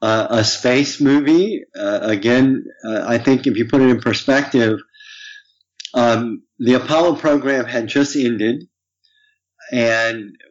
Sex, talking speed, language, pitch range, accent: male, 130 wpm, English, 110-150 Hz, American